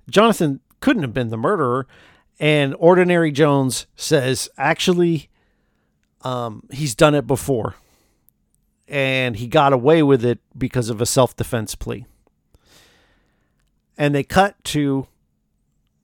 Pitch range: 115-155 Hz